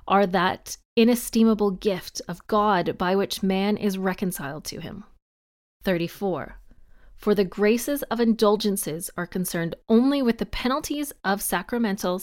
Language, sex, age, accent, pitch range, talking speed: English, female, 30-49, American, 180-235 Hz, 130 wpm